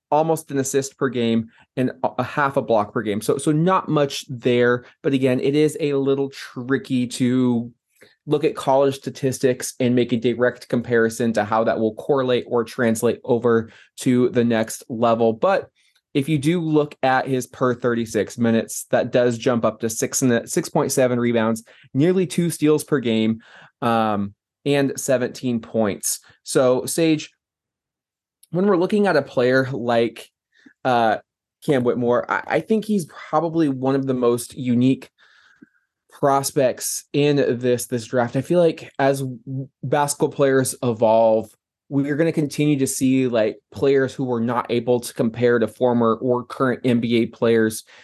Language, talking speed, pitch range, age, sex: English, 160 wpm, 115-140 Hz, 20-39, male